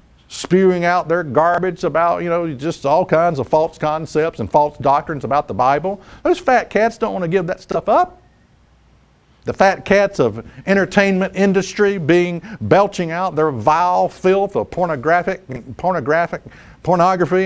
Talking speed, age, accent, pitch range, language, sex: 155 wpm, 50-69, American, 140-200 Hz, English, male